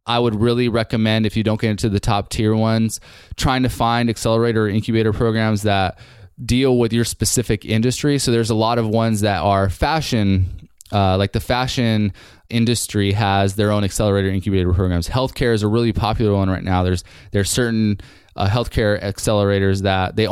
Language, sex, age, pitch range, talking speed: English, male, 20-39, 100-120 Hz, 185 wpm